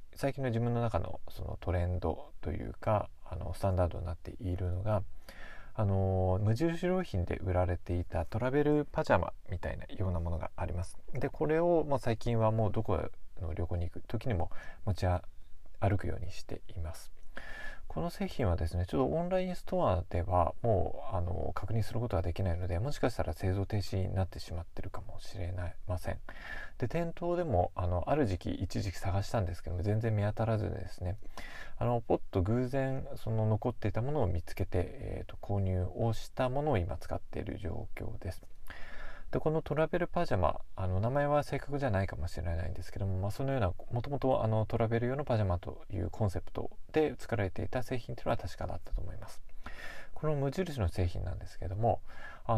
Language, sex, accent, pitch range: Japanese, male, native, 90-120 Hz